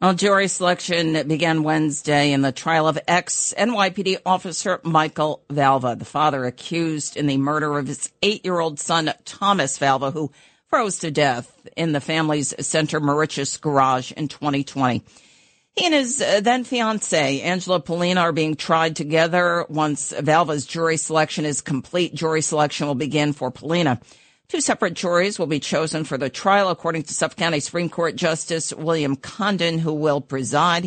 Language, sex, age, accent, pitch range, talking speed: English, female, 50-69, American, 145-175 Hz, 155 wpm